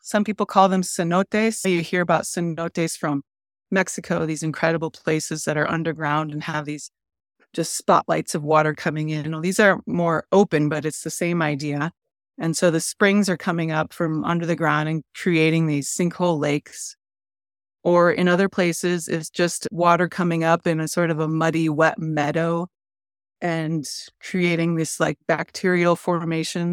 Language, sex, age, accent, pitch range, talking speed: English, female, 30-49, American, 155-180 Hz, 175 wpm